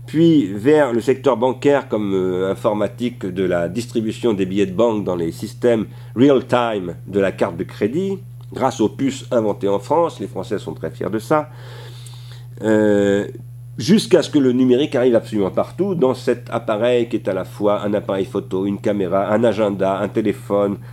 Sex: male